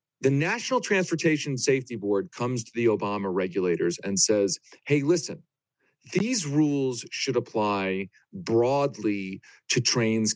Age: 40-59